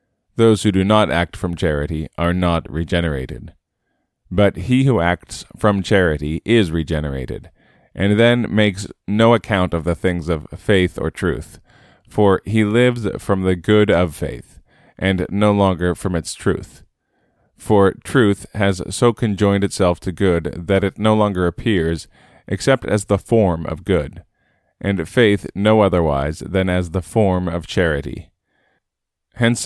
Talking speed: 150 wpm